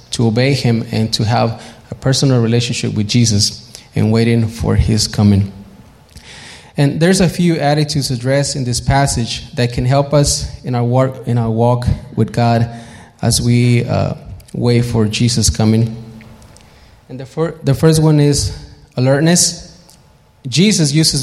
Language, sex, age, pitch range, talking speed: English, male, 20-39, 115-140 Hz, 155 wpm